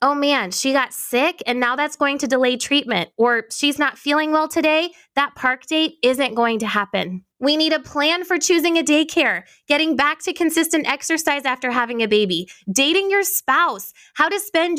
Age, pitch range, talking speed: 20-39, 235-315 Hz, 195 wpm